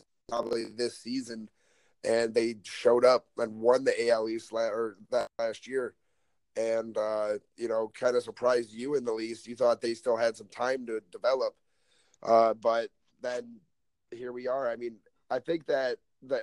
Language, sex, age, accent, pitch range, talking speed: English, male, 30-49, American, 115-125 Hz, 180 wpm